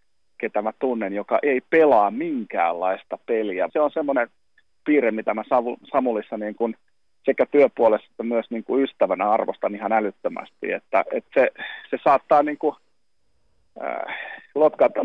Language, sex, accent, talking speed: Finnish, male, native, 135 wpm